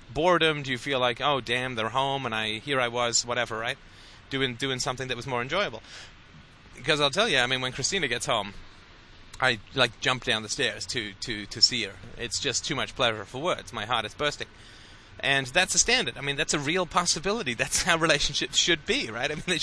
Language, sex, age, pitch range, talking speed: English, male, 30-49, 115-165 Hz, 225 wpm